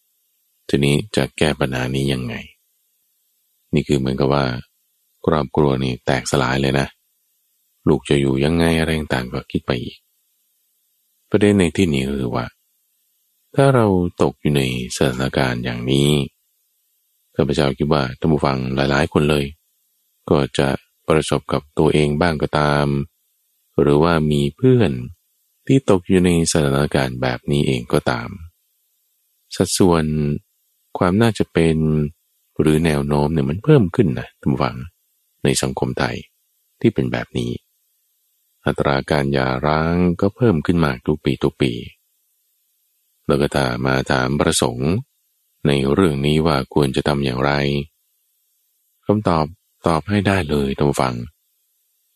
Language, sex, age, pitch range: Thai, male, 20-39, 70-80 Hz